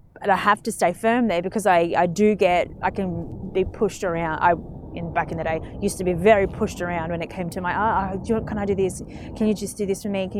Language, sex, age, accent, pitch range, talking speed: English, female, 20-39, Australian, 180-215 Hz, 275 wpm